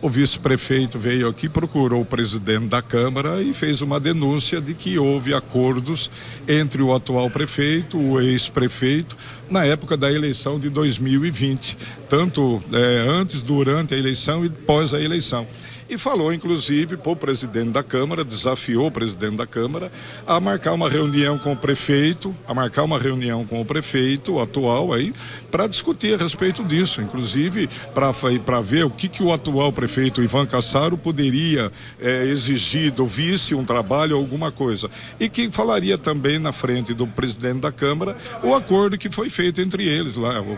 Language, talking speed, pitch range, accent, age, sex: Portuguese, 165 wpm, 125-155 Hz, Brazilian, 60-79, male